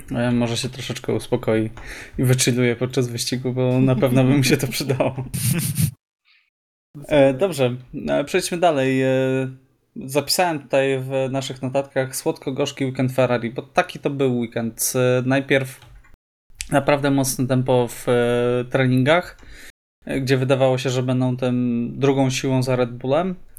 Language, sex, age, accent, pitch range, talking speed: Polish, male, 20-39, native, 125-140 Hz, 125 wpm